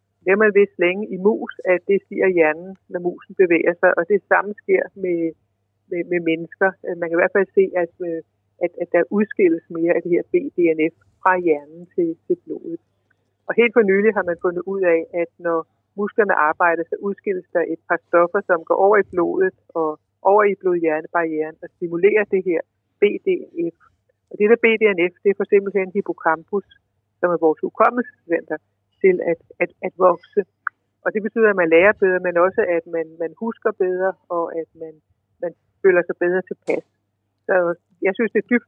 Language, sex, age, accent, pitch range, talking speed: Danish, female, 60-79, native, 165-200 Hz, 195 wpm